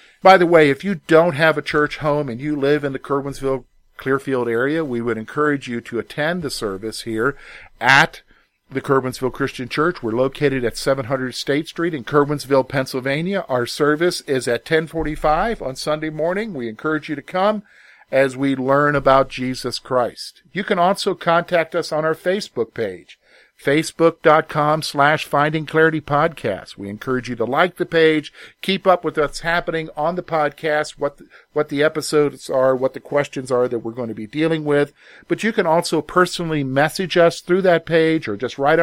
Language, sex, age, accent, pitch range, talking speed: English, male, 50-69, American, 130-160 Hz, 180 wpm